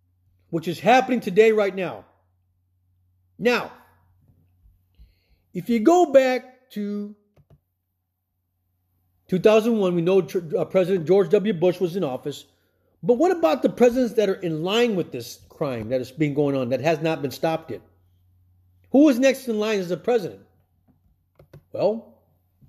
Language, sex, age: English, male, 50-69